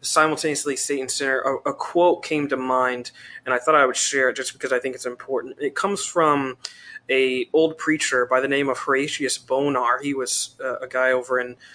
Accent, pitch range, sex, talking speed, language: American, 130-150 Hz, male, 210 wpm, English